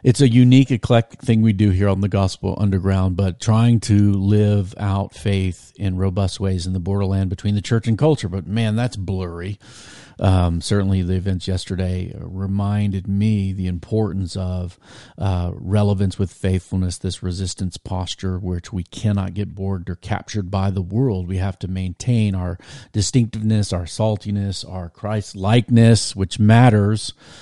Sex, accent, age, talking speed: male, American, 40-59, 160 wpm